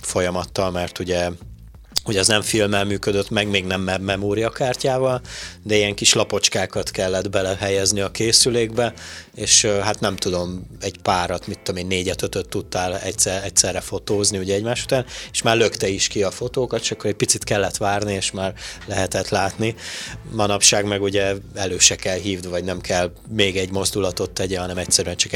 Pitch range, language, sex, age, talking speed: 90-105 Hz, Hungarian, male, 30-49, 175 wpm